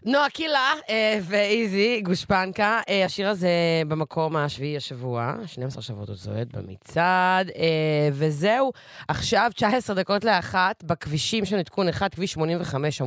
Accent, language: Italian, English